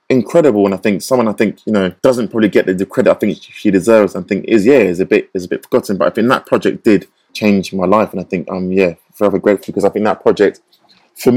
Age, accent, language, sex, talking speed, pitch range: 20-39, British, English, male, 275 wpm, 95-120 Hz